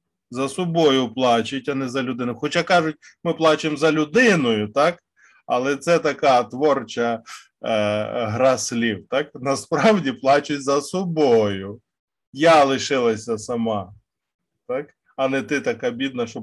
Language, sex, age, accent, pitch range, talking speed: Ukrainian, male, 20-39, native, 110-155 Hz, 130 wpm